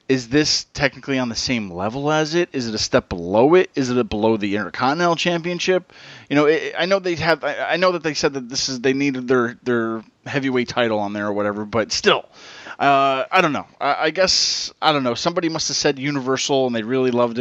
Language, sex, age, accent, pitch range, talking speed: English, male, 30-49, American, 120-165 Hz, 240 wpm